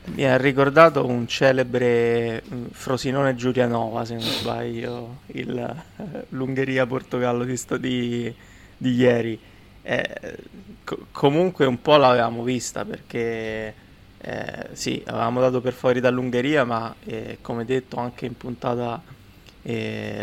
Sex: male